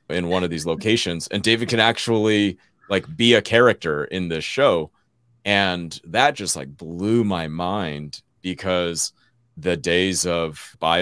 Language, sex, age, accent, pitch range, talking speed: English, male, 30-49, American, 75-95 Hz, 150 wpm